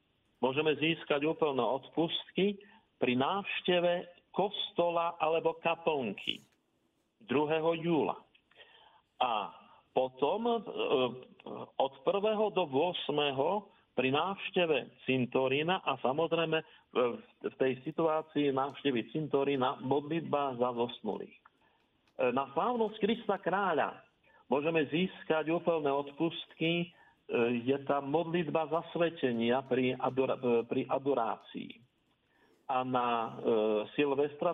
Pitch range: 130-170 Hz